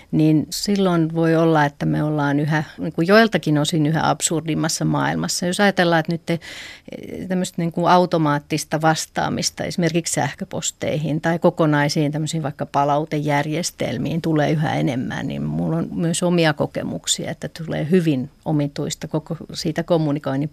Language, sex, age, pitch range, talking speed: Finnish, female, 40-59, 155-175 Hz, 135 wpm